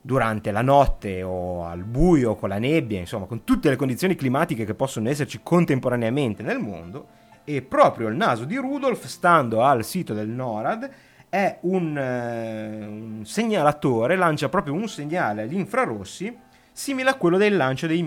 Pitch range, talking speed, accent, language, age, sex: 130-195 Hz, 165 wpm, native, Italian, 30-49, male